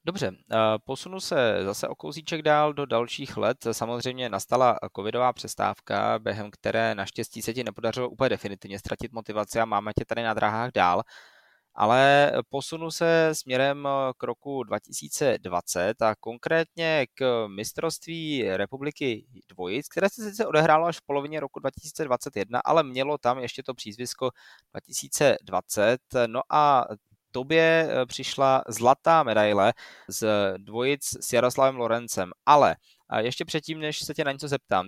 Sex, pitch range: male, 115-140 Hz